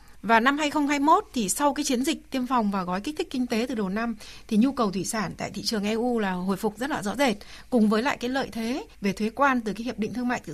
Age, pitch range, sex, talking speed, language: 60-79, 210-270 Hz, female, 290 wpm, Vietnamese